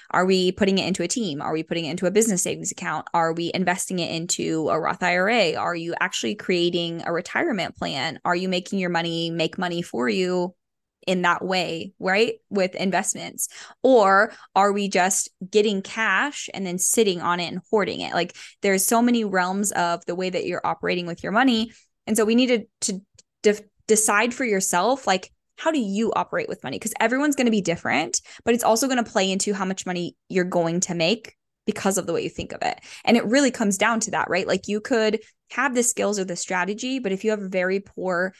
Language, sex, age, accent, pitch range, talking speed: English, female, 10-29, American, 180-225 Hz, 220 wpm